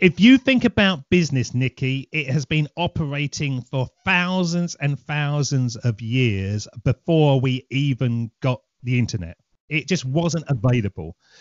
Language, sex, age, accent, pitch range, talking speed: English, male, 40-59, British, 140-190 Hz, 135 wpm